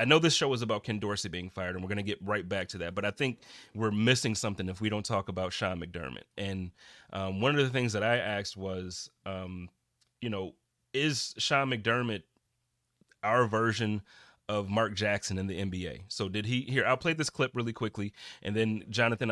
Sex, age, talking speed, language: male, 30-49, 215 wpm, English